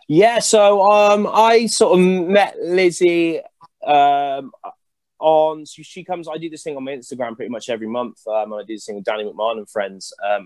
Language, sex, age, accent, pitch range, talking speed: English, male, 20-39, British, 95-120 Hz, 195 wpm